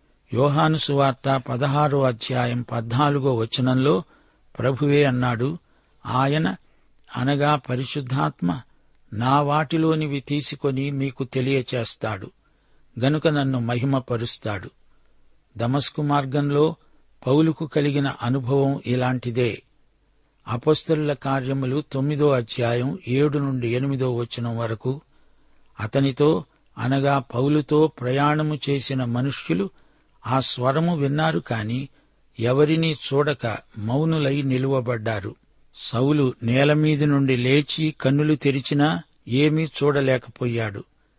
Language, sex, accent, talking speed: Telugu, male, native, 80 wpm